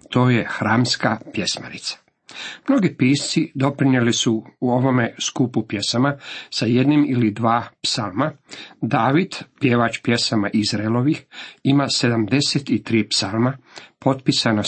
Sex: male